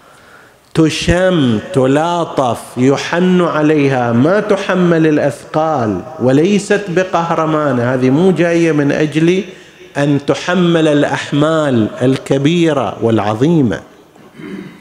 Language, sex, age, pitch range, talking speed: Arabic, male, 50-69, 140-175 Hz, 75 wpm